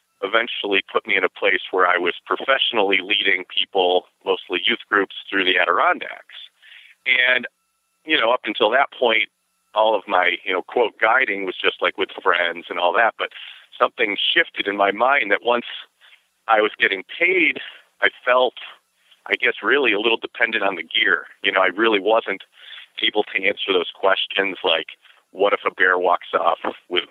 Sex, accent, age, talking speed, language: male, American, 40-59, 180 wpm, English